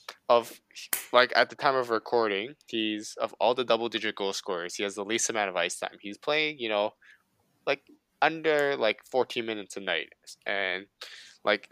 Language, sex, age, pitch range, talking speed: English, male, 20-39, 100-130 Hz, 185 wpm